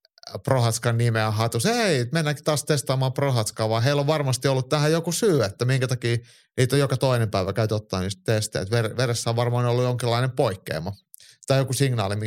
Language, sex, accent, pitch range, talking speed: Finnish, male, native, 110-135 Hz, 180 wpm